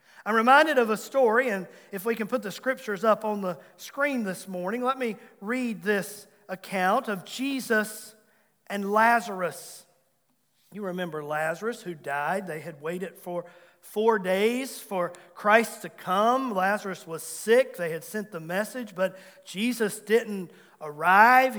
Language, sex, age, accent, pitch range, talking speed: English, male, 40-59, American, 185-240 Hz, 150 wpm